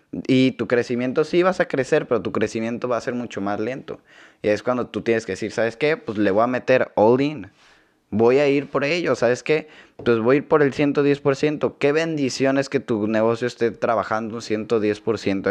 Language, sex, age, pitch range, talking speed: Spanish, male, 20-39, 110-135 Hz, 215 wpm